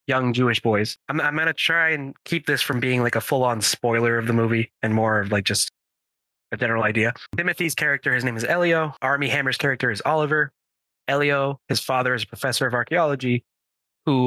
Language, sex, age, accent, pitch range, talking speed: English, male, 20-39, American, 115-140 Hz, 200 wpm